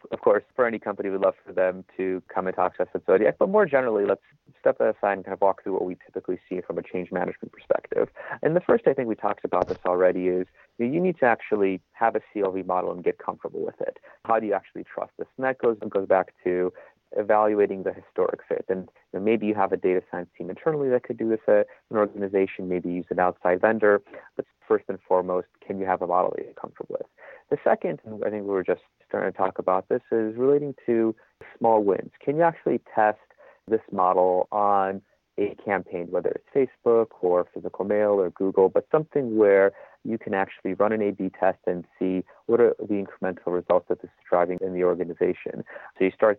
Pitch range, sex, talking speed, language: 95-120 Hz, male, 225 wpm, English